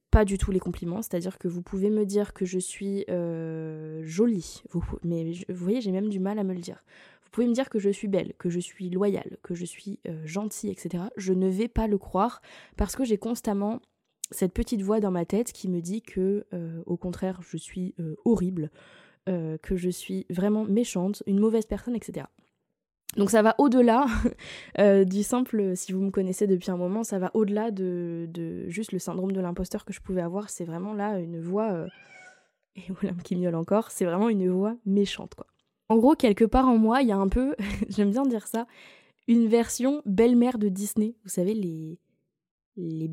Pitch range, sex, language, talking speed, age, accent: 180-220 Hz, female, French, 210 wpm, 20-39, French